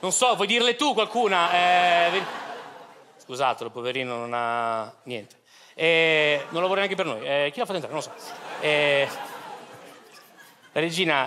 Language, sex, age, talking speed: Italian, male, 30-49, 165 wpm